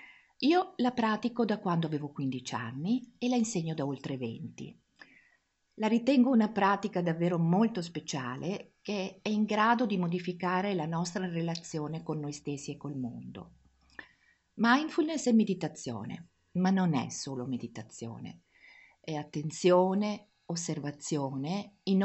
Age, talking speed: 50-69, 130 wpm